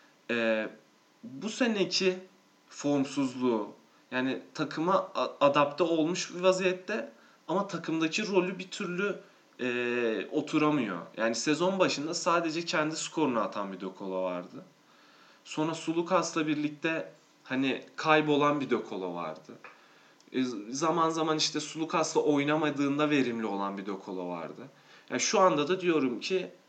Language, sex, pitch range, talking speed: Turkish, male, 115-165 Hz, 115 wpm